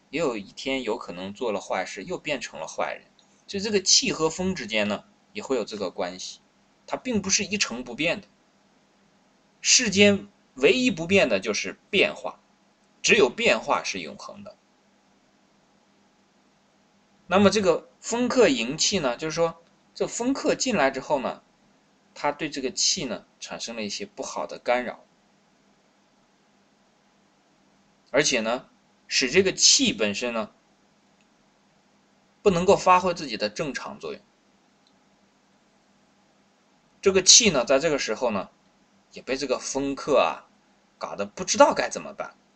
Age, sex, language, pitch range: 20-39, male, Chinese, 160-215 Hz